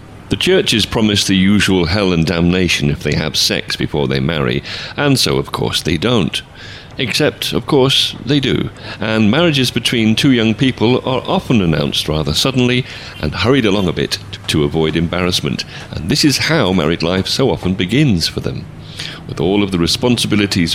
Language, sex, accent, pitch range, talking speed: English, male, British, 85-115 Hz, 175 wpm